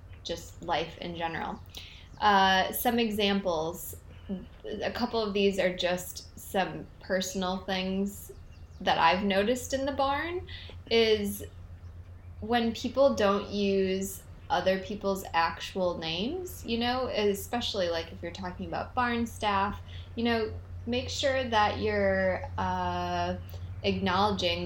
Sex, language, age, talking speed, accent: female, English, 20-39, 120 wpm, American